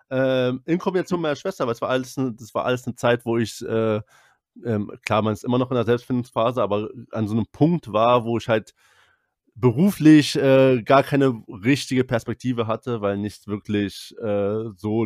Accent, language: German, German